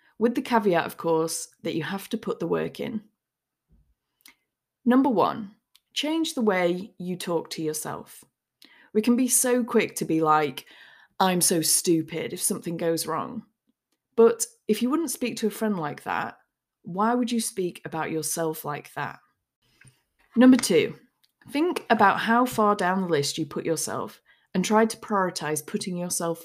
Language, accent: English, British